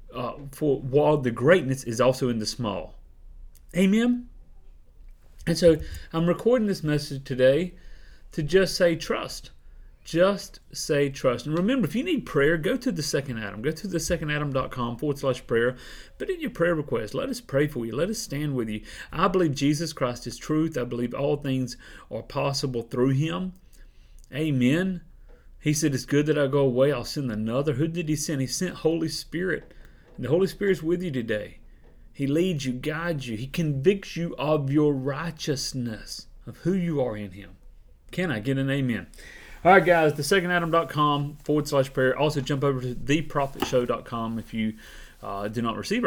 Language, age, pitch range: English, 30-49, 120-165 Hz